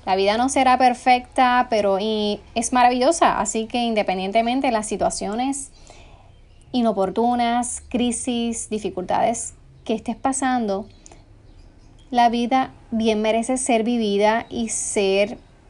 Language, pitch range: Spanish, 205-245 Hz